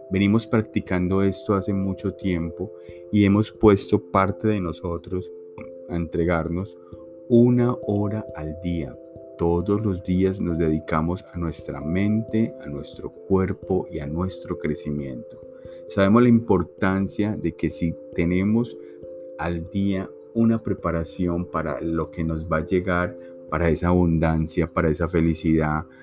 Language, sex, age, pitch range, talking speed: Spanish, male, 30-49, 80-100 Hz, 130 wpm